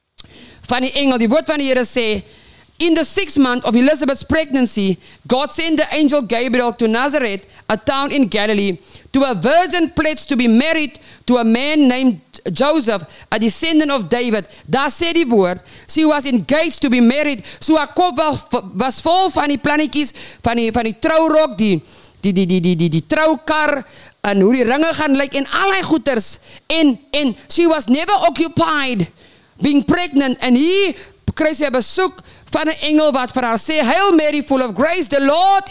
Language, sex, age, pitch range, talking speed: English, female, 50-69, 245-310 Hz, 175 wpm